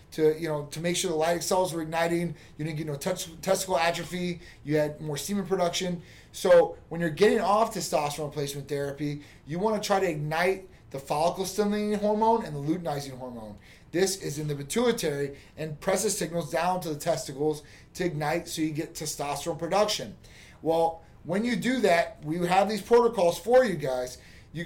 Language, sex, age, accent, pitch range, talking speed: English, male, 30-49, American, 150-190 Hz, 185 wpm